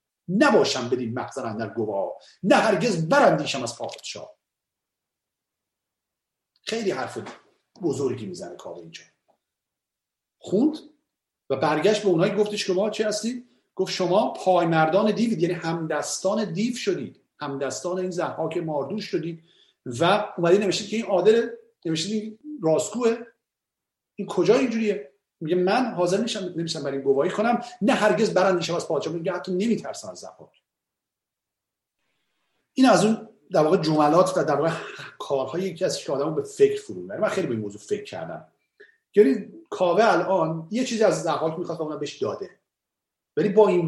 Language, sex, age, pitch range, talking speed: Persian, male, 40-59, 170-225 Hz, 145 wpm